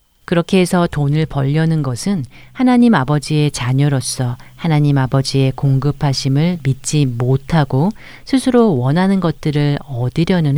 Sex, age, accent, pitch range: female, 40-59, native, 130-165 Hz